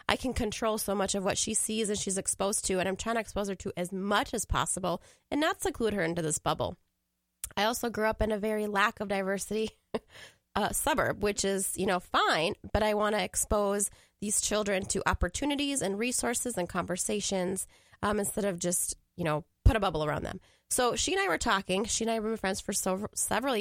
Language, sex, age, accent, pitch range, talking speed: English, female, 20-39, American, 185-235 Hz, 220 wpm